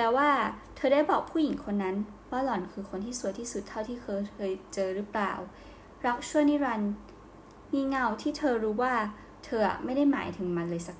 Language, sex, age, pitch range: Thai, female, 20-39, 190-235 Hz